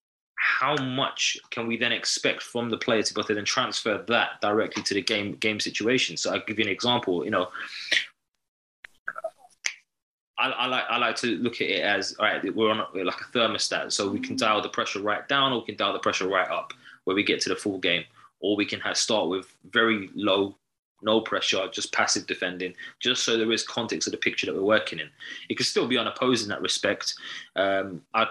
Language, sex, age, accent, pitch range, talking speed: English, male, 20-39, British, 105-120 Hz, 225 wpm